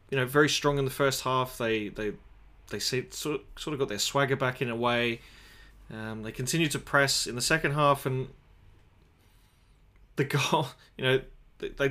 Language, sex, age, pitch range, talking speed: English, male, 20-39, 120-140 Hz, 180 wpm